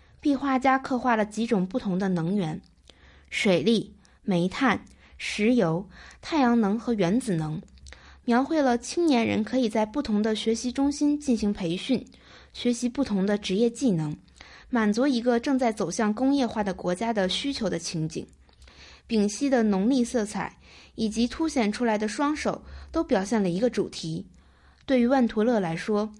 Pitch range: 195-255 Hz